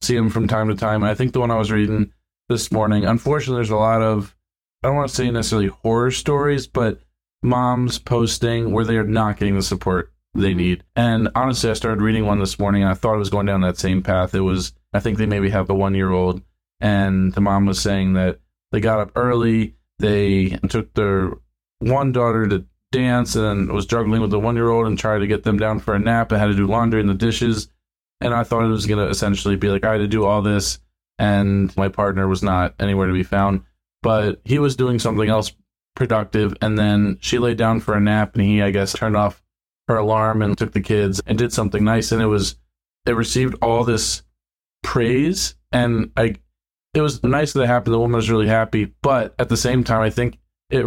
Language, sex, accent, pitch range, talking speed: English, male, American, 100-115 Hz, 230 wpm